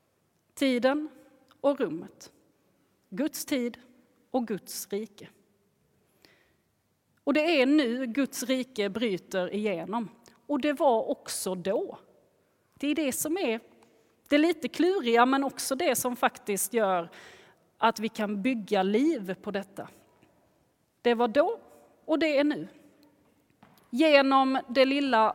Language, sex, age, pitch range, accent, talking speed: Swedish, female, 30-49, 210-280 Hz, native, 125 wpm